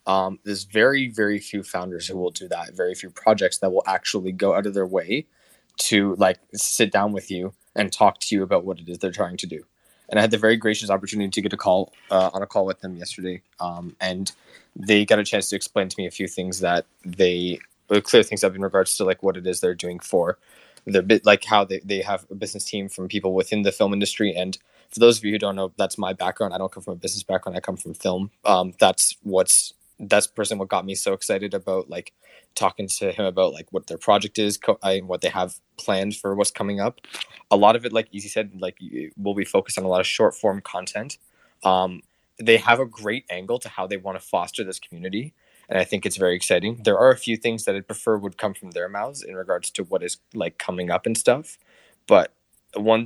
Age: 20-39